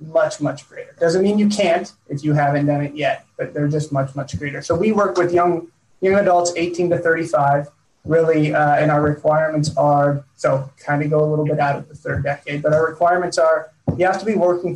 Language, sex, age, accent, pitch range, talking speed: English, male, 20-39, American, 145-170 Hz, 230 wpm